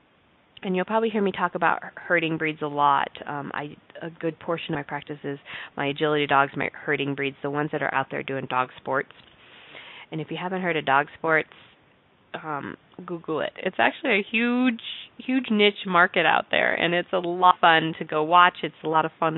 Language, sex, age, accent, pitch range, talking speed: English, female, 20-39, American, 150-190 Hz, 215 wpm